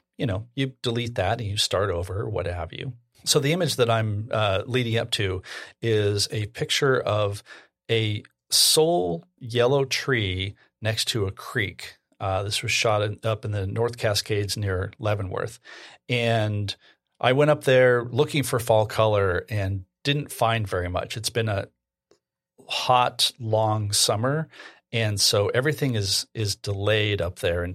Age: 40-59